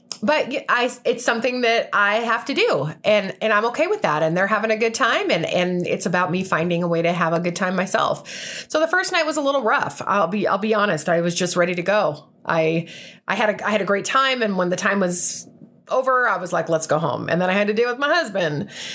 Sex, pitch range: female, 175-240 Hz